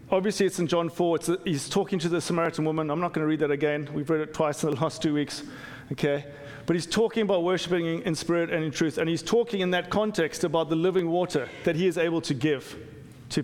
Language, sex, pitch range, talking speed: English, male, 155-190 Hz, 245 wpm